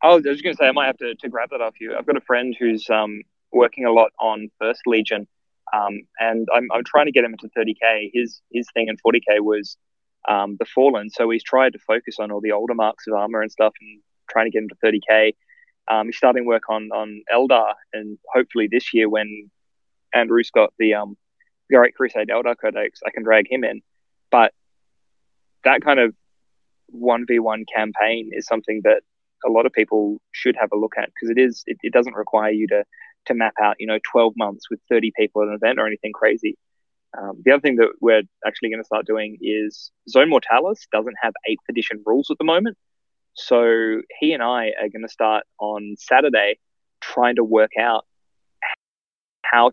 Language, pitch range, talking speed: English, 105-120 Hz, 210 wpm